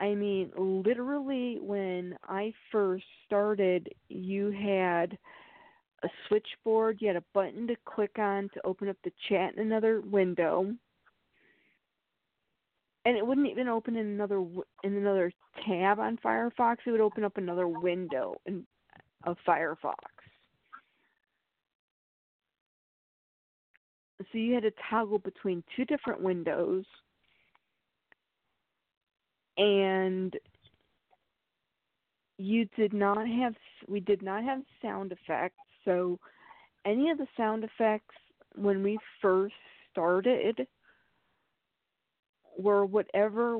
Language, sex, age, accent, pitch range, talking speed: English, female, 40-59, American, 185-225 Hz, 110 wpm